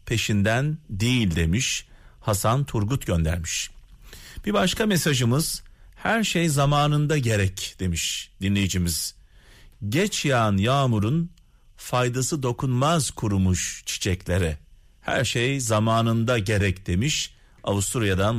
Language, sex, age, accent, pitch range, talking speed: Turkish, male, 40-59, native, 100-155 Hz, 90 wpm